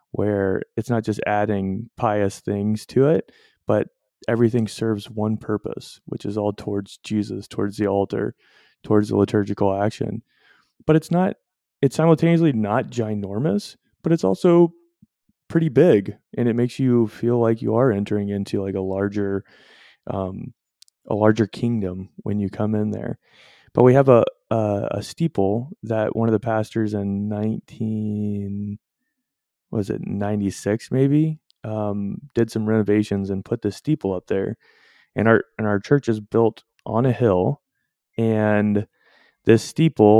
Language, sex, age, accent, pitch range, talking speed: English, male, 20-39, American, 105-125 Hz, 150 wpm